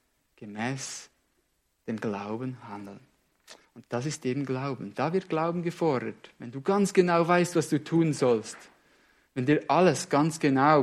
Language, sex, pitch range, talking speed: English, male, 120-155 Hz, 150 wpm